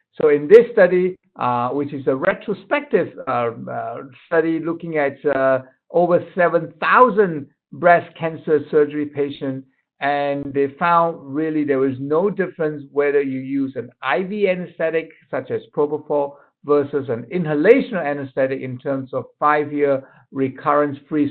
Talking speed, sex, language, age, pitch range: 140 wpm, male, English, 60-79, 135-180 Hz